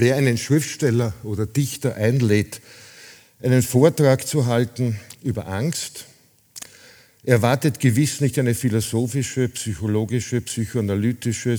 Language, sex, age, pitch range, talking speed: German, male, 50-69, 110-140 Hz, 100 wpm